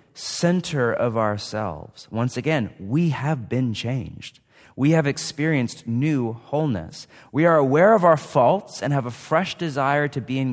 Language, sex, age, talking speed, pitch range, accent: English, male, 30-49, 160 wpm, 105-135 Hz, American